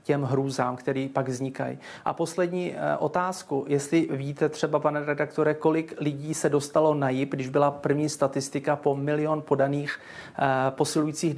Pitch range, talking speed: 135-150 Hz, 140 wpm